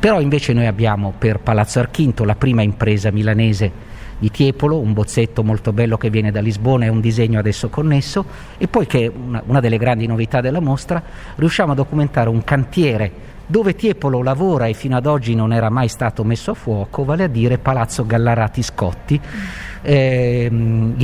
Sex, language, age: male, Italian, 50-69